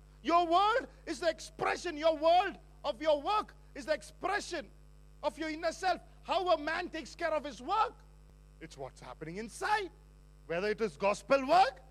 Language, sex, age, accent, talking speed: English, male, 50-69, Indian, 170 wpm